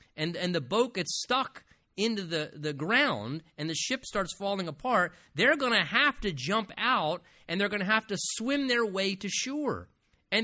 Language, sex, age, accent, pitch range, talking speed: English, male, 40-59, American, 160-220 Hz, 200 wpm